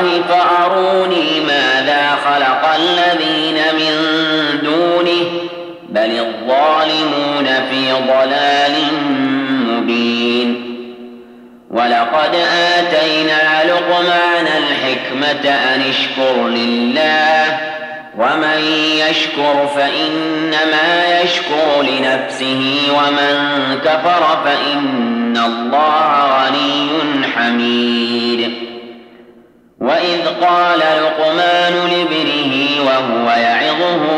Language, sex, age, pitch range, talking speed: Arabic, male, 40-59, 120-155 Hz, 60 wpm